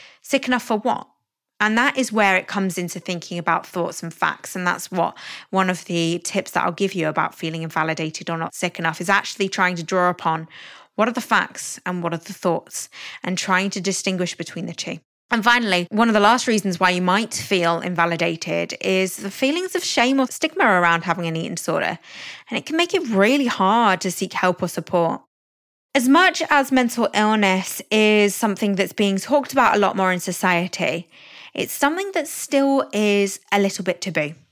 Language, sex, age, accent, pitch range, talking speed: English, female, 20-39, British, 180-245 Hz, 205 wpm